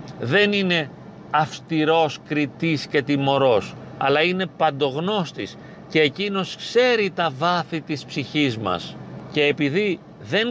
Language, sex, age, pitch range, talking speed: Greek, male, 40-59, 135-170 Hz, 115 wpm